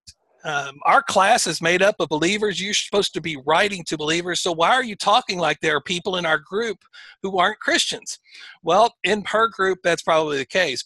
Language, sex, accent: English, male, American